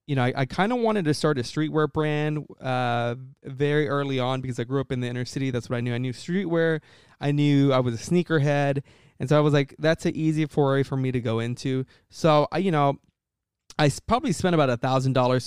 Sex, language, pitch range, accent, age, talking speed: male, English, 125-155 Hz, American, 20-39, 240 wpm